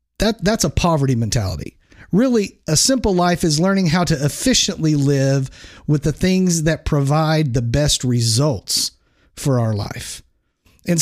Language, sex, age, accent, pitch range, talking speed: English, male, 40-59, American, 135-180 Hz, 145 wpm